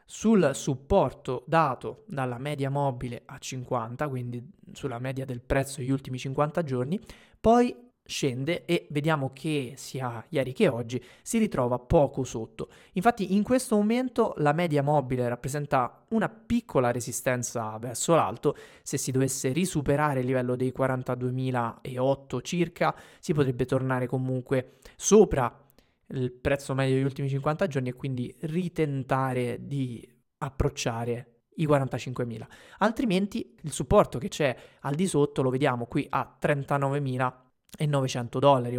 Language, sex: Italian, male